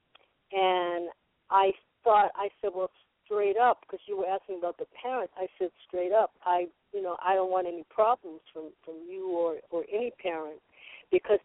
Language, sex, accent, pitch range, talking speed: English, female, American, 165-230 Hz, 185 wpm